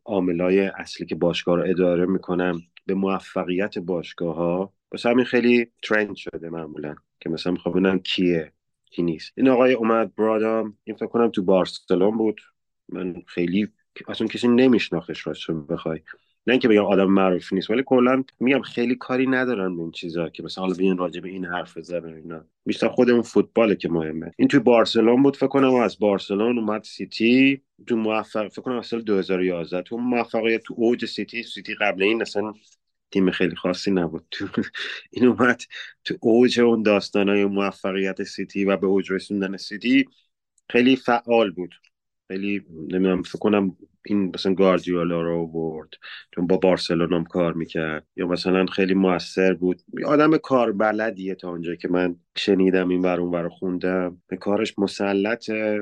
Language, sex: Persian, male